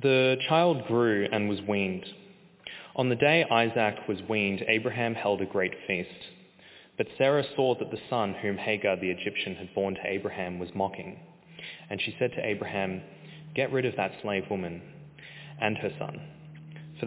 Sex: male